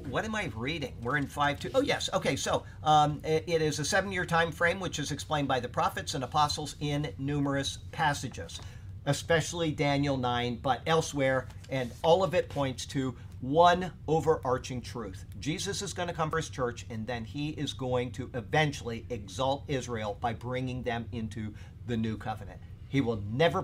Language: English